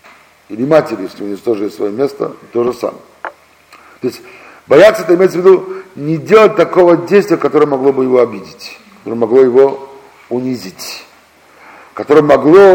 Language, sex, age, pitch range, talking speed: Russian, male, 50-69, 125-175 Hz, 160 wpm